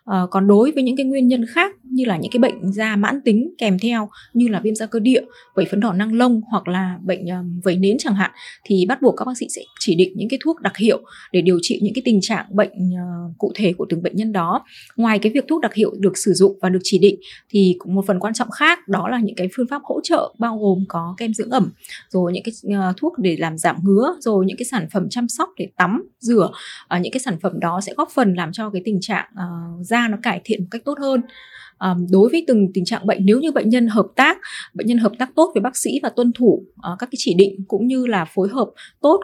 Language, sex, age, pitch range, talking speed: Vietnamese, female, 20-39, 190-245 Hz, 270 wpm